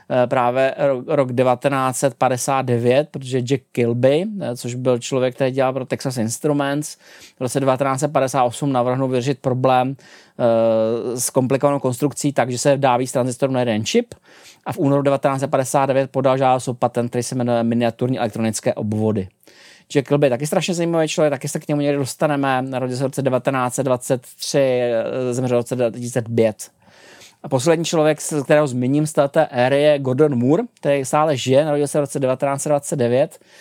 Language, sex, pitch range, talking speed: Czech, male, 125-145 Hz, 145 wpm